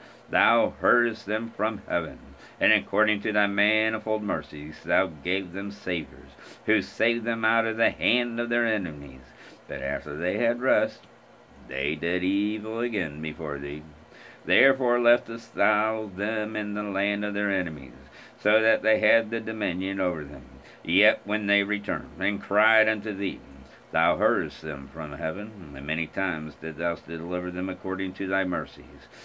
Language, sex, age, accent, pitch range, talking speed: English, male, 50-69, American, 75-110 Hz, 160 wpm